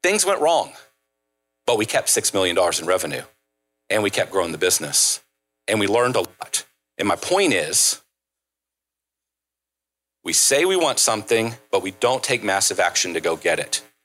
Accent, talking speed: American, 175 wpm